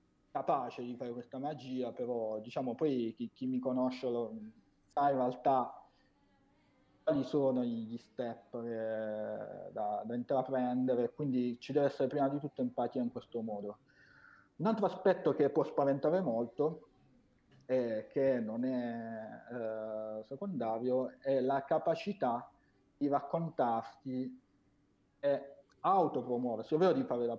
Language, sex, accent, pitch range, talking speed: Italian, male, native, 120-150 Hz, 130 wpm